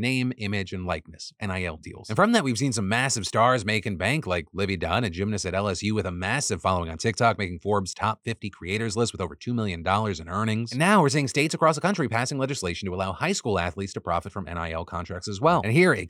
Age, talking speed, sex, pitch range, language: 30-49, 245 wpm, male, 95-125 Hz, English